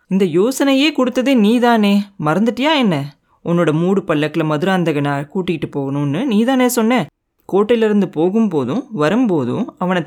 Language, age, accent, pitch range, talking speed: Tamil, 20-39, native, 165-235 Hz, 120 wpm